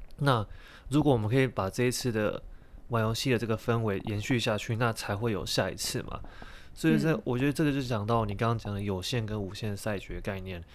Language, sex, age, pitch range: Chinese, male, 20-39, 100-125 Hz